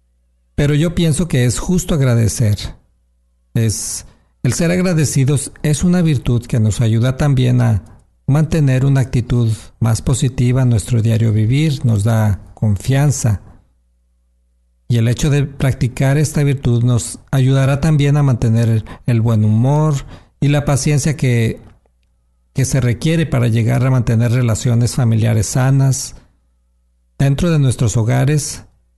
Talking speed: 130 wpm